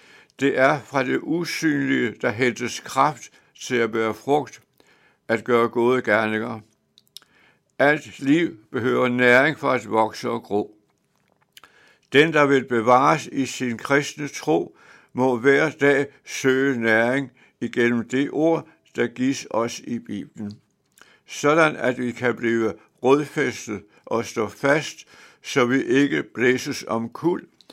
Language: Danish